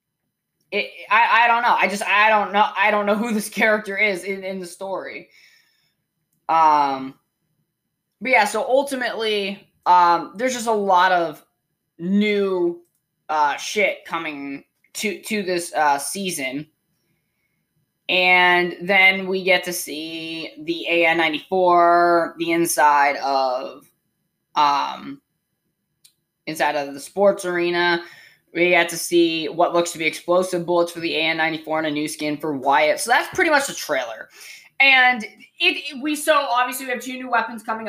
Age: 20-39